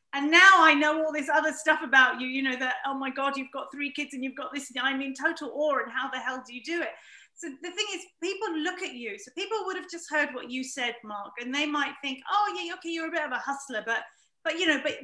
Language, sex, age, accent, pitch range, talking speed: English, female, 40-59, British, 255-340 Hz, 285 wpm